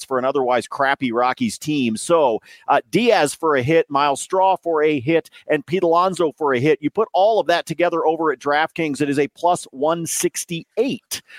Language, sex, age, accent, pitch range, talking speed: English, male, 40-59, American, 140-175 Hz, 195 wpm